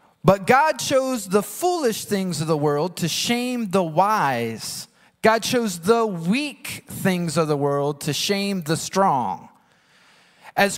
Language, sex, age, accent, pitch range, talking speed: English, male, 30-49, American, 165-230 Hz, 145 wpm